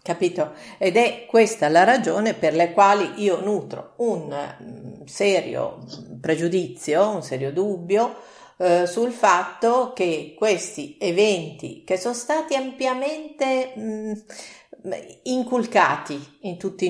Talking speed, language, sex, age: 110 wpm, Italian, female, 50-69